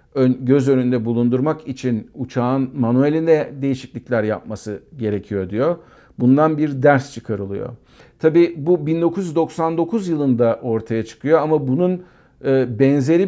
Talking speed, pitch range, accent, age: 105 wpm, 115-140 Hz, native, 50-69